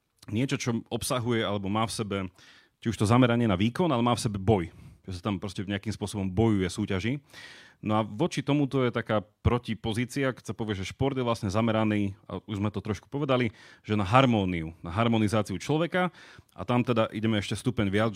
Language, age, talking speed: Slovak, 30-49, 205 wpm